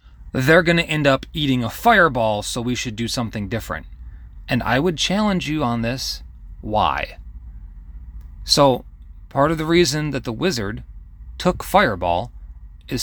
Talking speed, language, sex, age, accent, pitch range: 150 wpm, English, male, 30-49, American, 95-145 Hz